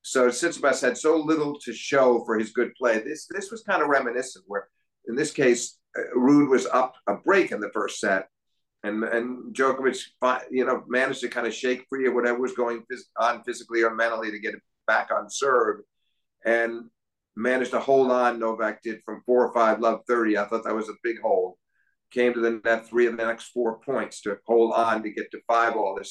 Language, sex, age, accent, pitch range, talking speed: English, male, 50-69, American, 110-130 Hz, 215 wpm